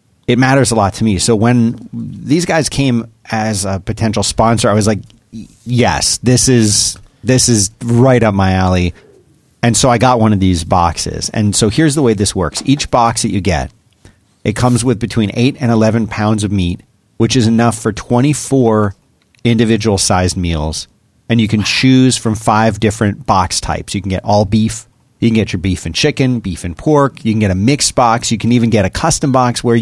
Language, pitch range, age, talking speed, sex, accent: English, 100-120 Hz, 40-59, 205 wpm, male, American